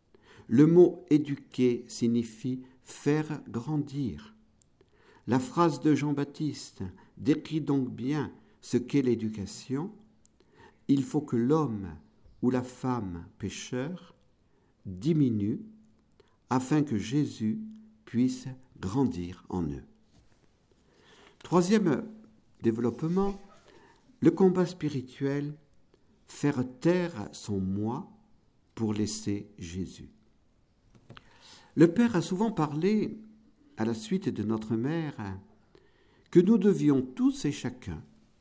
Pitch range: 110-170 Hz